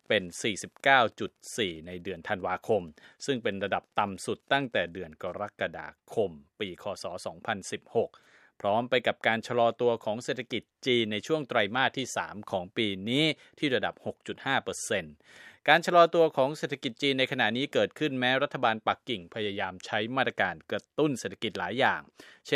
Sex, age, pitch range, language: male, 20-39, 105-135 Hz, Thai